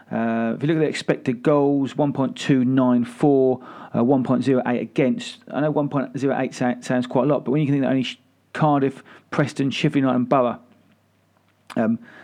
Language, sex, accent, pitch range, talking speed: English, male, British, 125-140 Hz, 150 wpm